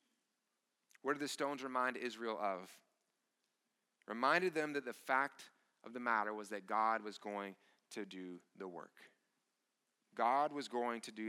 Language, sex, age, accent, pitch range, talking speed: English, male, 30-49, American, 115-150 Hz, 155 wpm